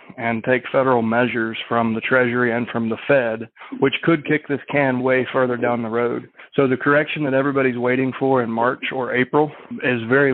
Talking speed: 195 wpm